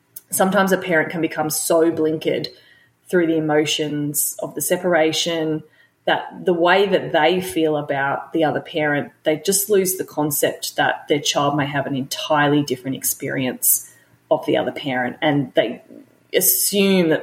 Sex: female